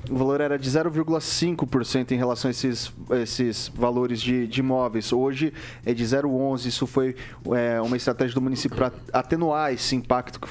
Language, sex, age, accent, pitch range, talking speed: Portuguese, male, 20-39, Brazilian, 125-150 Hz, 170 wpm